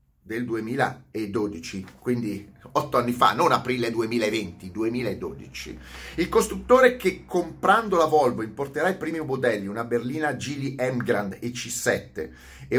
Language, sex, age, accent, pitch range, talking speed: Italian, male, 30-49, native, 115-185 Hz, 125 wpm